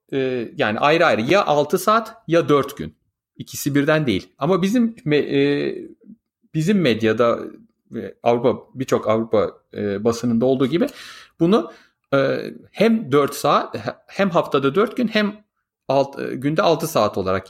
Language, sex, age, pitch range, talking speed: Turkish, male, 40-59, 120-205 Hz, 125 wpm